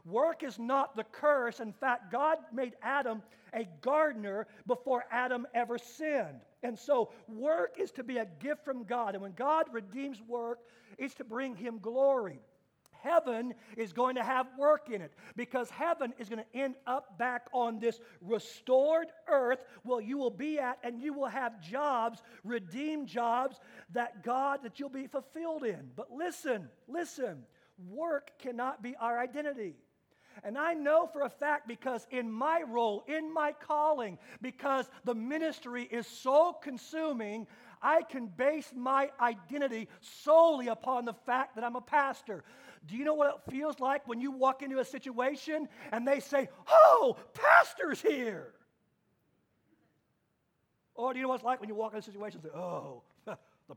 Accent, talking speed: American, 170 wpm